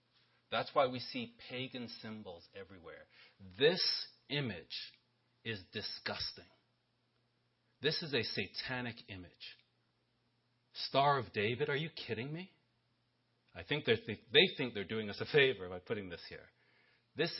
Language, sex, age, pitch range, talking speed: English, male, 40-59, 105-125 Hz, 130 wpm